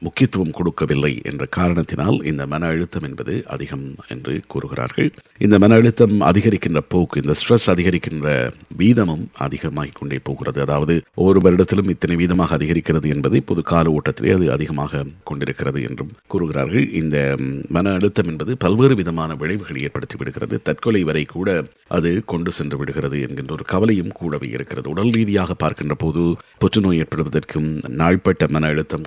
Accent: native